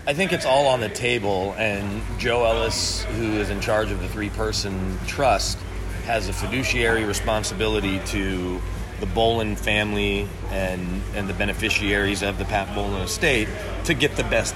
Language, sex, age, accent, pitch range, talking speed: English, male, 30-49, American, 100-115 Hz, 160 wpm